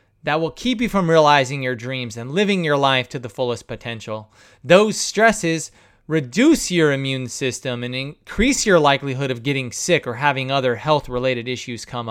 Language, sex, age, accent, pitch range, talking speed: English, male, 30-49, American, 125-180 Hz, 175 wpm